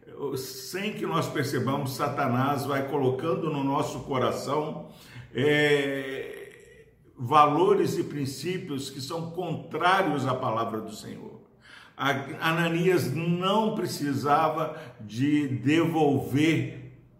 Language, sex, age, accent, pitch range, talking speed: Portuguese, male, 50-69, Brazilian, 125-165 Hz, 85 wpm